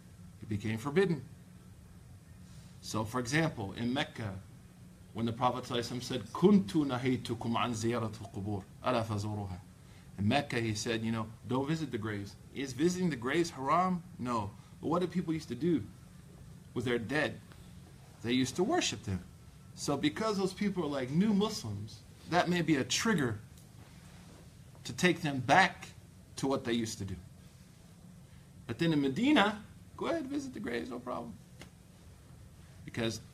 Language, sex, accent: English, male, American